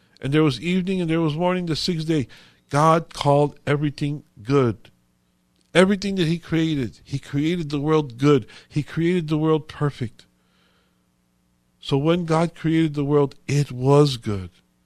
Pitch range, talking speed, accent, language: 125-160 Hz, 155 wpm, American, English